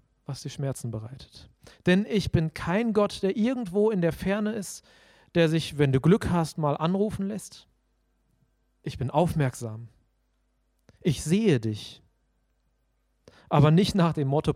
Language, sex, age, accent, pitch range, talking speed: German, male, 40-59, German, 130-185 Hz, 145 wpm